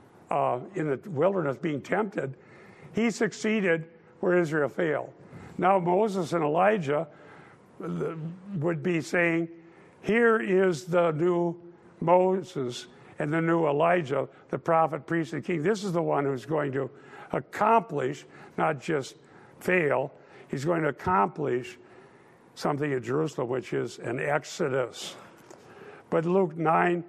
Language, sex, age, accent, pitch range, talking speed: English, male, 60-79, American, 155-185 Hz, 125 wpm